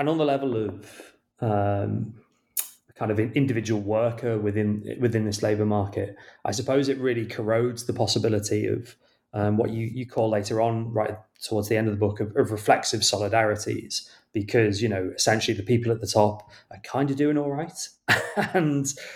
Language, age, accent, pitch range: English, 30-49, British, 105-120 Hz